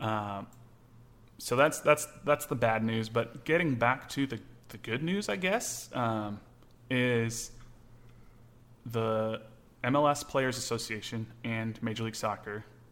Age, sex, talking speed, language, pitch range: 30-49, male, 130 wpm, English, 110-120 Hz